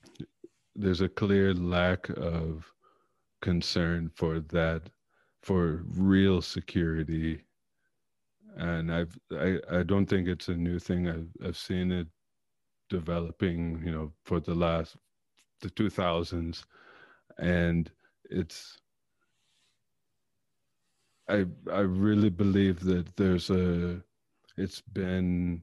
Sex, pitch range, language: male, 85-95 Hz, English